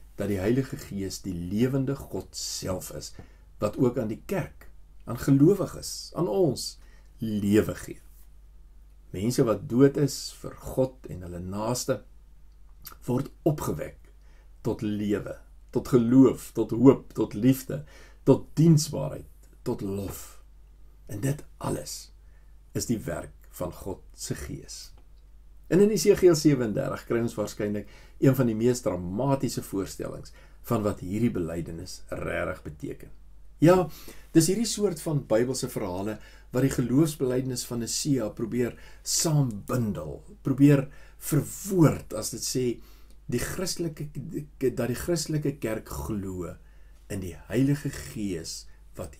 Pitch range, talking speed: 80-135 Hz, 130 wpm